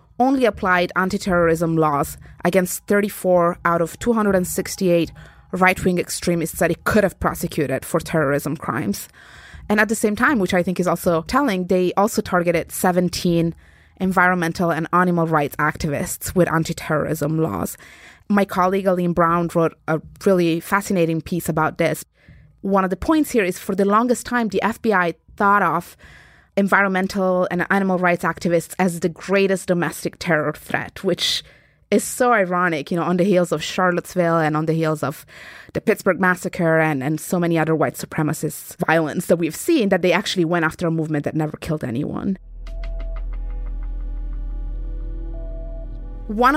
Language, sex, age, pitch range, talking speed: English, female, 20-39, 160-195 Hz, 155 wpm